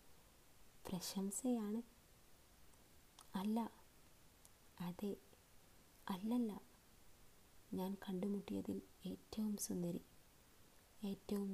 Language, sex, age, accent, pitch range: Malayalam, female, 20-39, native, 175-195 Hz